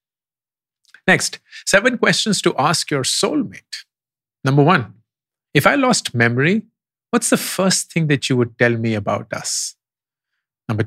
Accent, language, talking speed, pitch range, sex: Indian, English, 140 wpm, 115-155 Hz, male